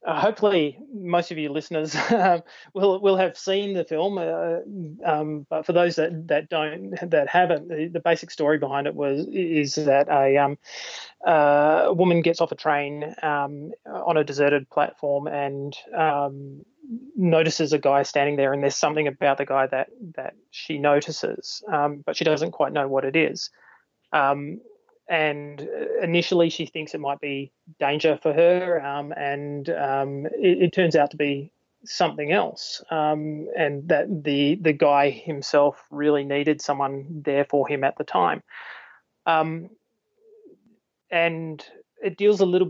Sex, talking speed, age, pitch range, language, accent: male, 165 wpm, 20-39, 145-170 Hz, English, Australian